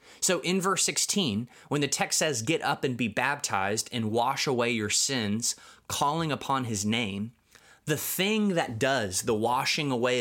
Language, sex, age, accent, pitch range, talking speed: English, male, 20-39, American, 105-135 Hz, 170 wpm